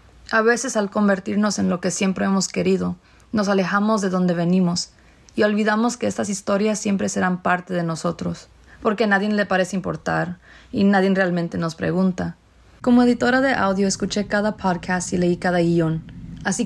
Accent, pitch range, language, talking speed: Mexican, 175-215 Hz, English, 175 wpm